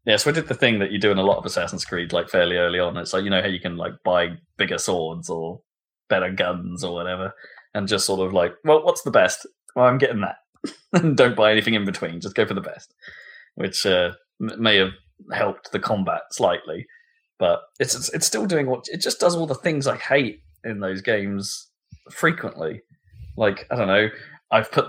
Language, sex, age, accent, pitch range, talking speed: English, male, 20-39, British, 105-170 Hz, 220 wpm